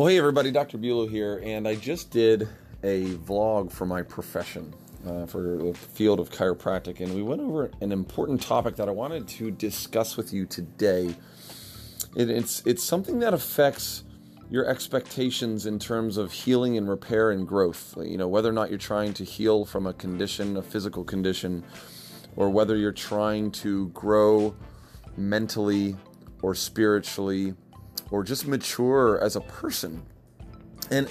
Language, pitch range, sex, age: English, 95-120 Hz, male, 30-49